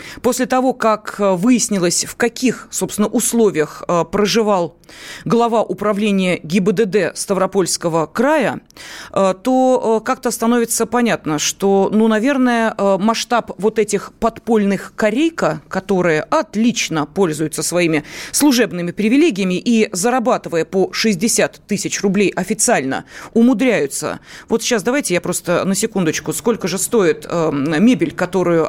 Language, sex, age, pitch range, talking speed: Russian, female, 30-49, 185-240 Hz, 110 wpm